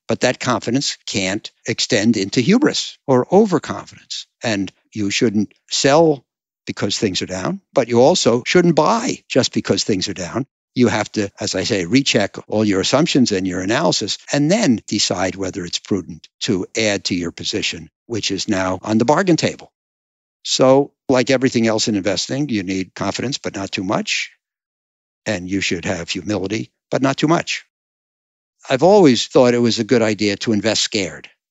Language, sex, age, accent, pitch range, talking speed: English, male, 60-79, American, 95-125 Hz, 175 wpm